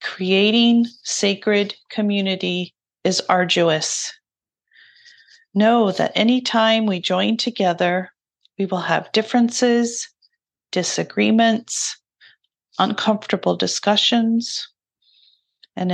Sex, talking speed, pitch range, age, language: female, 75 wpm, 175-225 Hz, 40-59, English